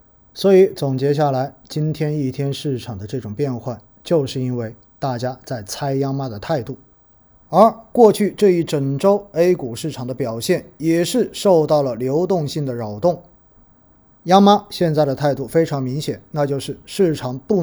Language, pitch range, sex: Chinese, 125-165 Hz, male